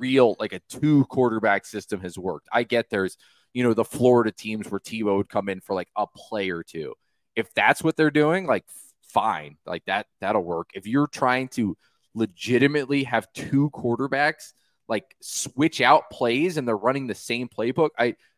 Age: 20-39